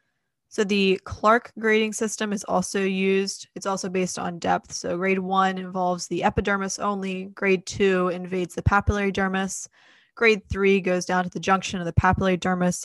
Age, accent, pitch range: 20-39, American, 180-195 Hz